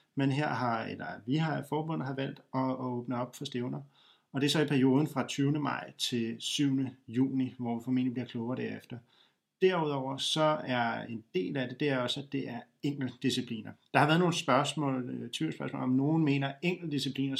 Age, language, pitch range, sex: 40-59, Danish, 125-150 Hz, male